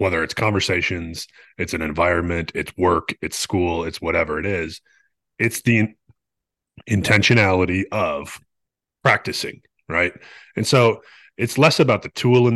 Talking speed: 135 wpm